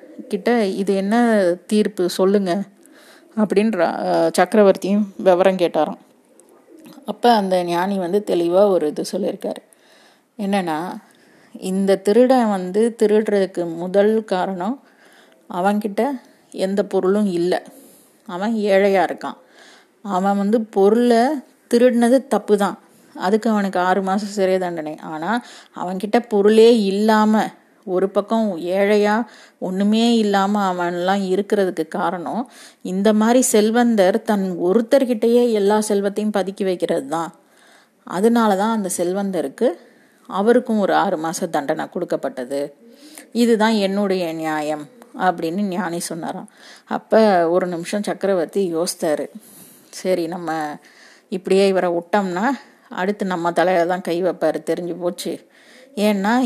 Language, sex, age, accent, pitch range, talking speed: Tamil, female, 20-39, native, 180-225 Hz, 105 wpm